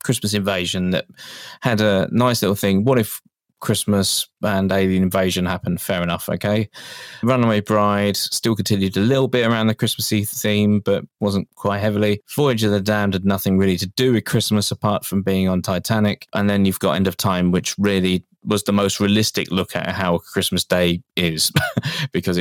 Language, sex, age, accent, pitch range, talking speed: English, male, 20-39, British, 95-115 Hz, 185 wpm